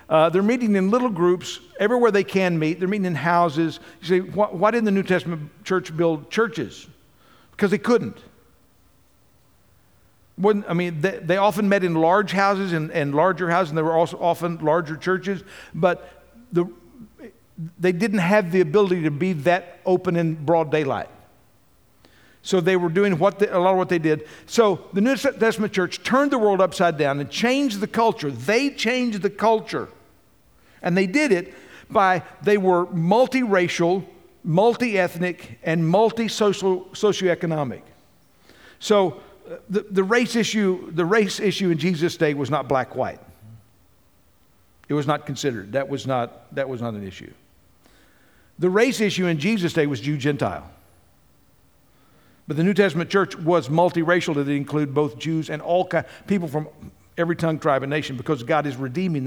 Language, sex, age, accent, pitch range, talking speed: English, male, 60-79, American, 155-200 Hz, 170 wpm